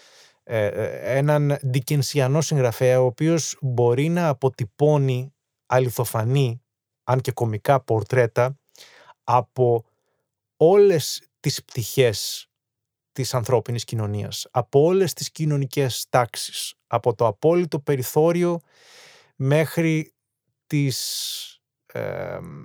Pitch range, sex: 125-155 Hz, male